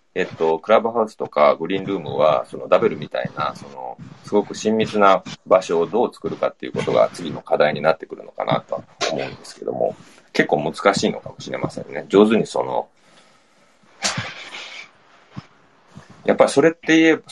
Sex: male